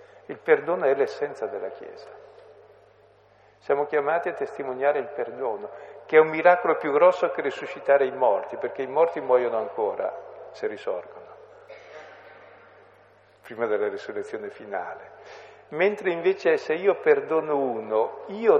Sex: male